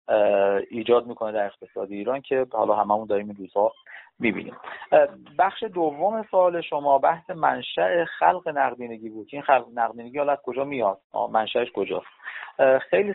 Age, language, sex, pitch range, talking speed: 40-59, Persian, male, 110-150 Hz, 140 wpm